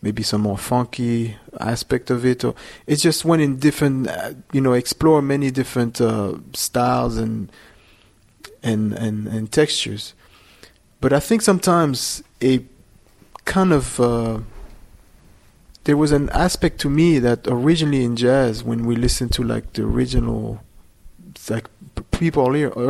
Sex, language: male, English